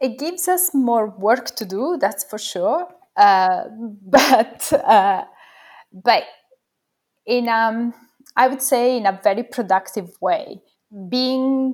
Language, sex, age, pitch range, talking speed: English, female, 20-39, 180-225 Hz, 130 wpm